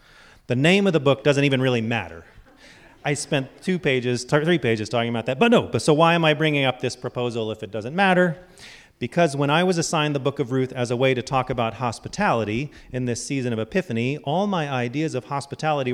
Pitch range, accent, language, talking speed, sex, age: 115-150 Hz, American, English, 225 wpm, male, 30-49